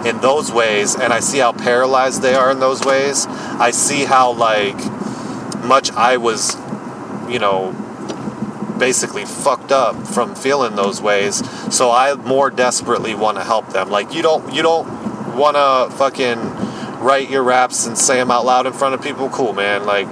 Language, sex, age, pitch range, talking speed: English, male, 30-49, 115-140 Hz, 180 wpm